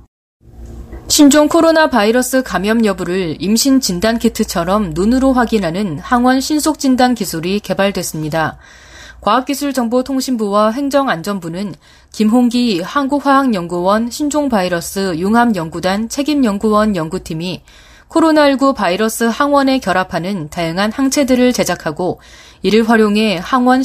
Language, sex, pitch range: Korean, female, 180-260 Hz